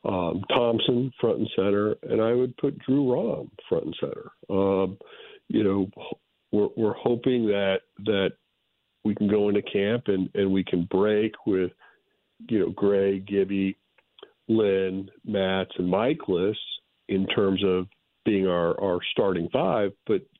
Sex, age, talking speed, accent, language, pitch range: male, 50-69, 150 wpm, American, English, 95-110 Hz